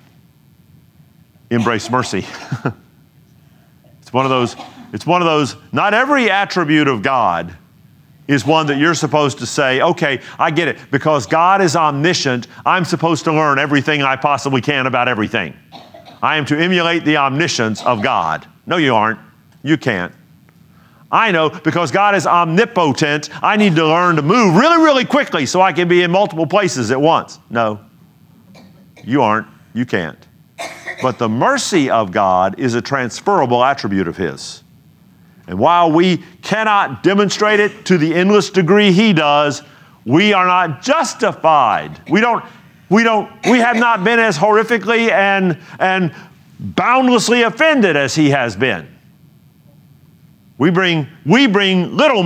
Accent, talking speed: American, 150 wpm